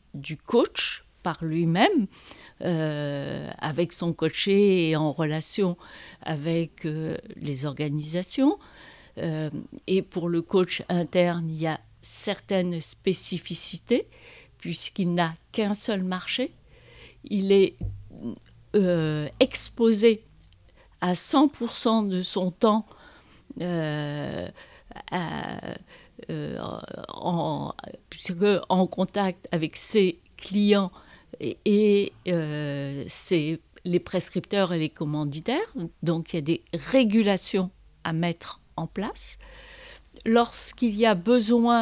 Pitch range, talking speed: 160-205 Hz, 100 wpm